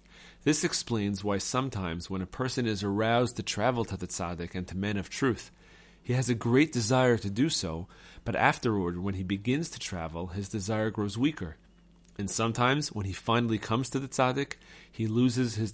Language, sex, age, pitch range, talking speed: English, male, 30-49, 100-120 Hz, 190 wpm